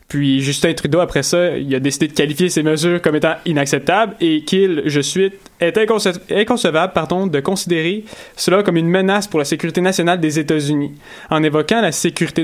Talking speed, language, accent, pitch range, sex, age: 190 wpm, French, Canadian, 145-185 Hz, male, 20-39